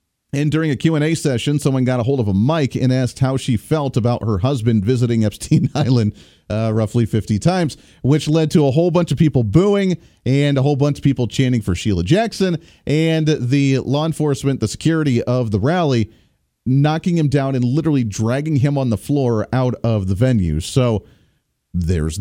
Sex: male